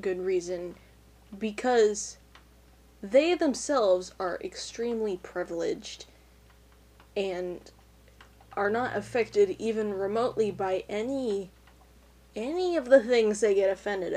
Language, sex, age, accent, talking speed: English, female, 10-29, American, 95 wpm